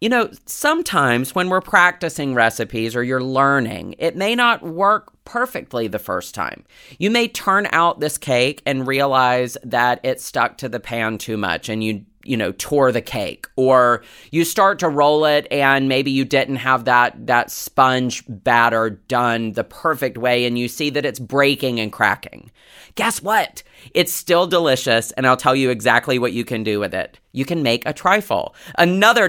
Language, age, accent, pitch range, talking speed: English, 30-49, American, 115-150 Hz, 185 wpm